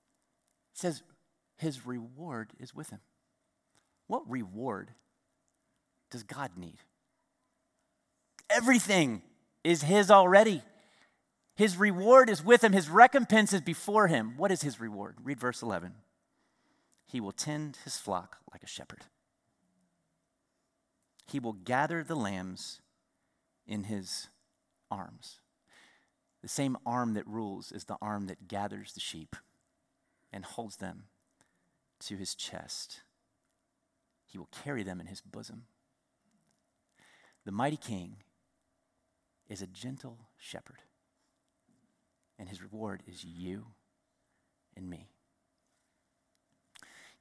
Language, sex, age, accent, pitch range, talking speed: English, male, 40-59, American, 100-160 Hz, 115 wpm